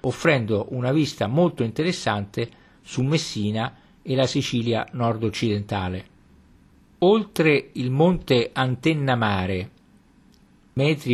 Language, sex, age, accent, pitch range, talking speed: Italian, male, 50-69, native, 100-145 Hz, 90 wpm